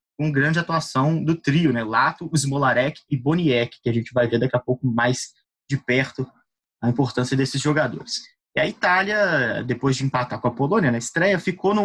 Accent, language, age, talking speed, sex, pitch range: Brazilian, Portuguese, 20-39, 195 wpm, male, 125-160 Hz